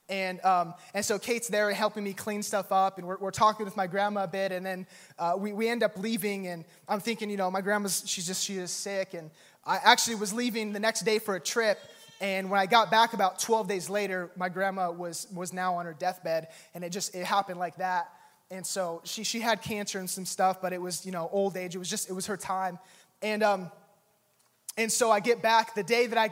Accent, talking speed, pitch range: American, 250 wpm, 185-215 Hz